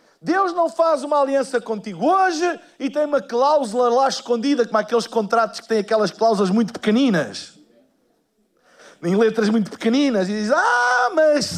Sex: male